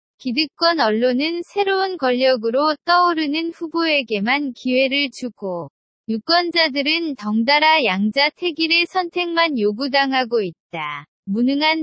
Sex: female